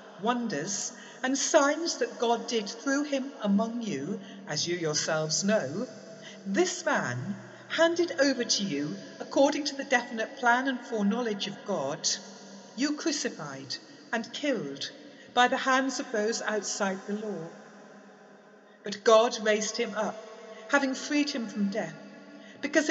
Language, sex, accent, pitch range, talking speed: English, female, British, 205-250 Hz, 135 wpm